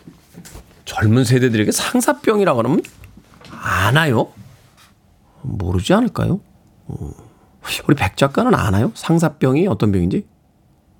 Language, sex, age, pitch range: Korean, male, 40-59, 105-165 Hz